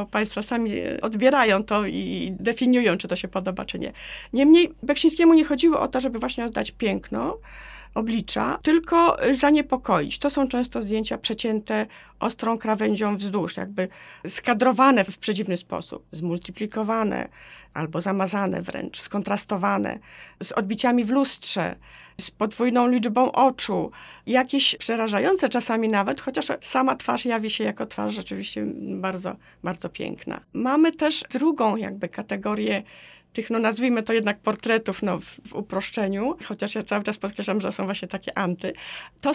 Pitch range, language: 195-255 Hz, Polish